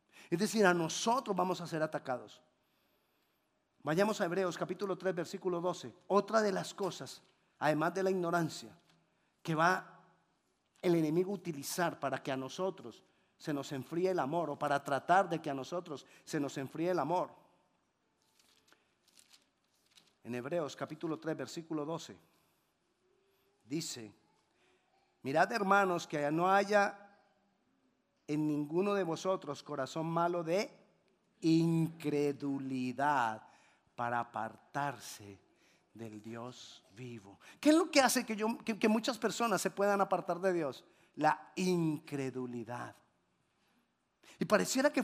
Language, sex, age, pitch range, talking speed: Spanish, male, 40-59, 145-205 Hz, 125 wpm